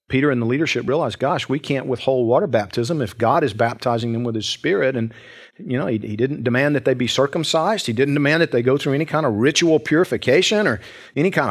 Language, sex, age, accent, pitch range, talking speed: English, male, 50-69, American, 120-150 Hz, 235 wpm